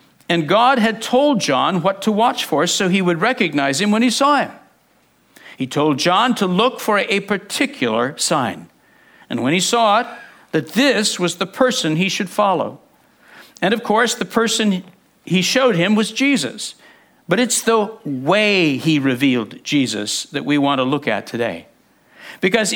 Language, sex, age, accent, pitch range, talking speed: English, male, 60-79, American, 145-225 Hz, 170 wpm